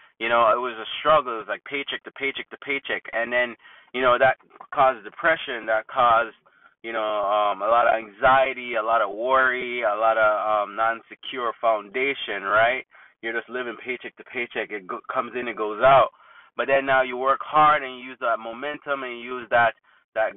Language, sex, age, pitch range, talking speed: English, male, 20-39, 115-140 Hz, 205 wpm